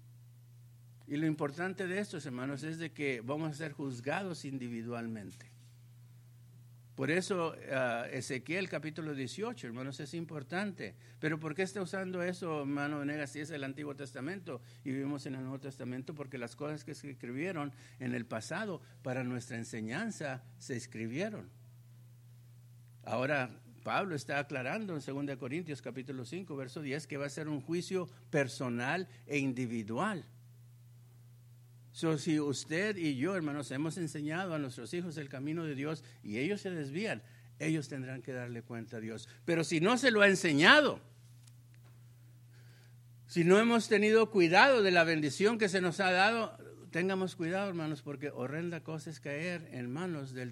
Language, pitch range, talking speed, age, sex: English, 120-165 Hz, 155 wpm, 60-79, male